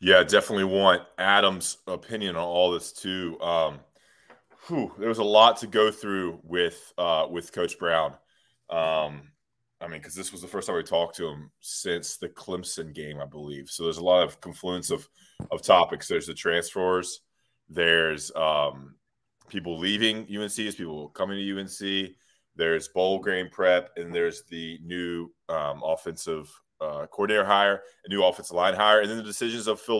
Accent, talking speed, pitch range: American, 175 wpm, 85-105 Hz